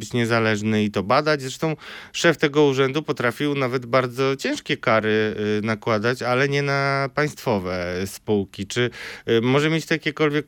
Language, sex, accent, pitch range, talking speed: Polish, male, native, 115-155 Hz, 135 wpm